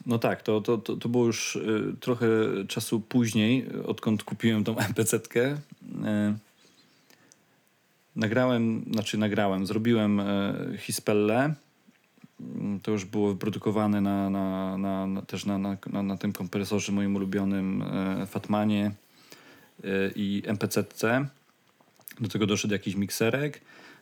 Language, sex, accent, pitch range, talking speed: Polish, male, native, 105-115 Hz, 110 wpm